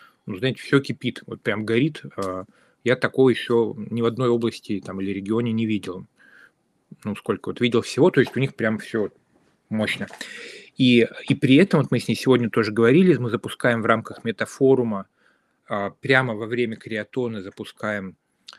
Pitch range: 105-130 Hz